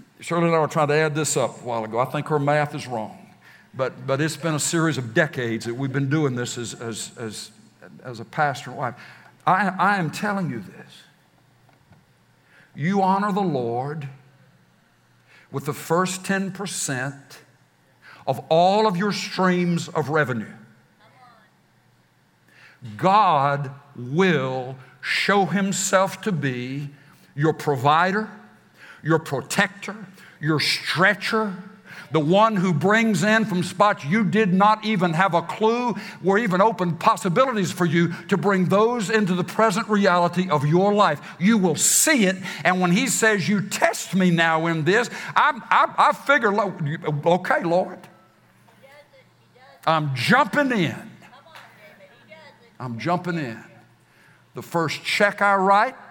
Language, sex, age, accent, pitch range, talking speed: English, male, 60-79, American, 150-200 Hz, 140 wpm